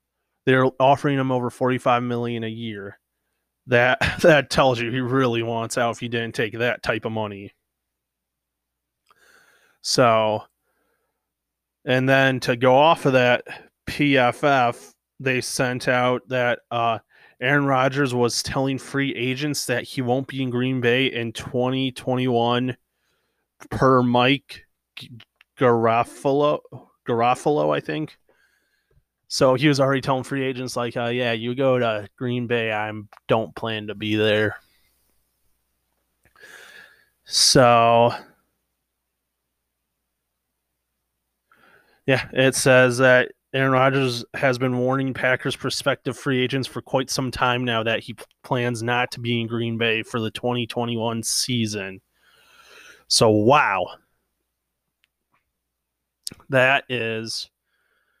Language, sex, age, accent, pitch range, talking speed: English, male, 20-39, American, 110-130 Hz, 120 wpm